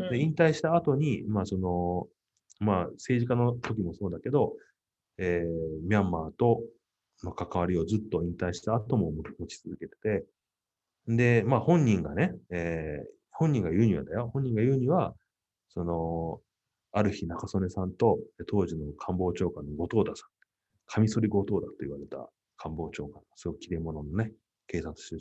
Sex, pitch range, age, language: male, 85-115 Hz, 30-49, Japanese